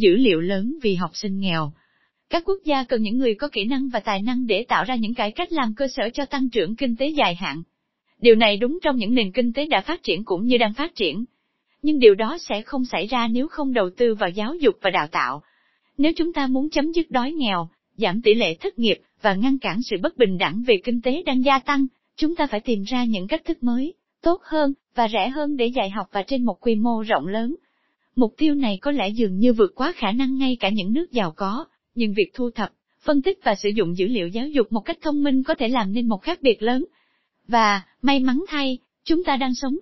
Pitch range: 215-285 Hz